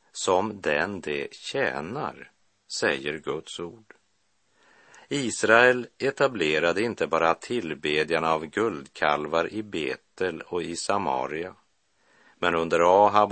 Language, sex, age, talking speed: Swedish, male, 50-69, 100 wpm